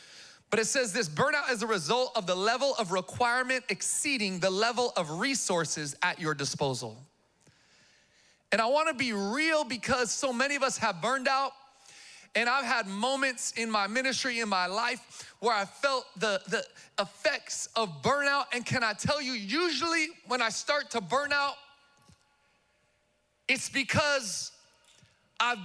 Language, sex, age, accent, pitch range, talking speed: English, male, 30-49, American, 215-285 Hz, 160 wpm